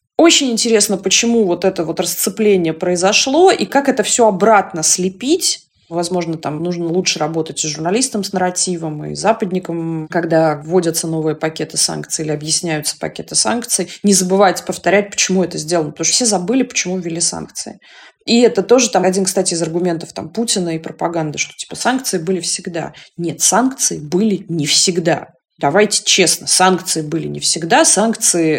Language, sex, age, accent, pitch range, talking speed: Russian, female, 20-39, native, 160-215 Hz, 160 wpm